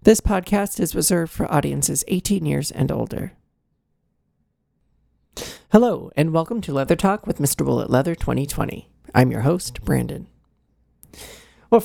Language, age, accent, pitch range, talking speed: English, 40-59, American, 155-205 Hz, 130 wpm